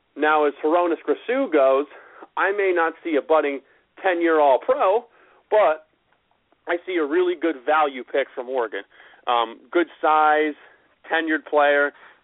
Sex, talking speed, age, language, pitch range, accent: male, 135 wpm, 40-59, English, 135-155 Hz, American